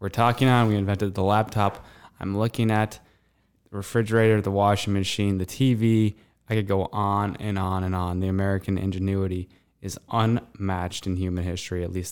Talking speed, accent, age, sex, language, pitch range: 175 wpm, American, 20-39, male, English, 90-105 Hz